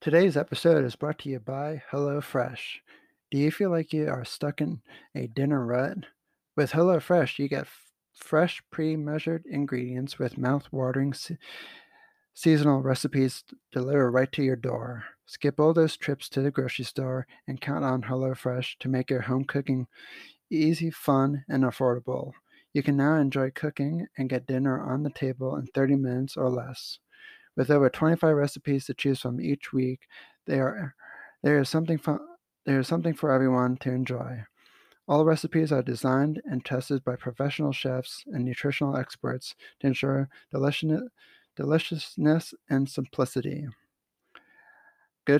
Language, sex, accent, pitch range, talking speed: English, male, American, 130-155 Hz, 145 wpm